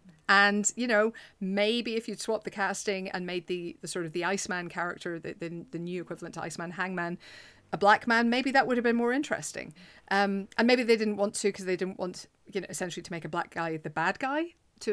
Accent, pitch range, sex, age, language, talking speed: British, 170-210 Hz, female, 40-59, English, 235 wpm